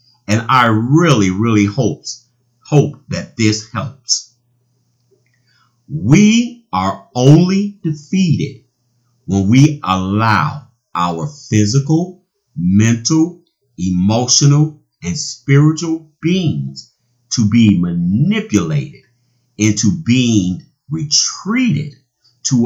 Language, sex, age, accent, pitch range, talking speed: English, male, 50-69, American, 115-150 Hz, 80 wpm